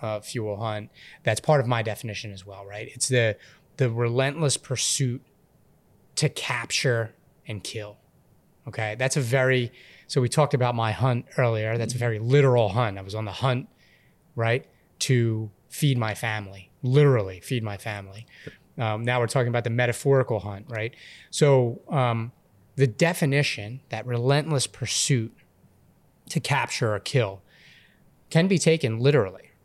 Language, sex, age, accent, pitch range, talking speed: English, male, 30-49, American, 110-140 Hz, 150 wpm